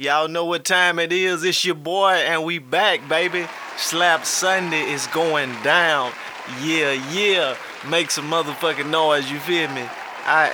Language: English